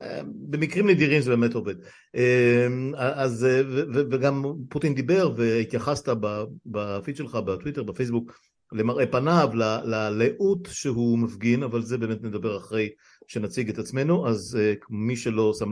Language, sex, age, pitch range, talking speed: Hebrew, male, 50-69, 105-125 Hz, 125 wpm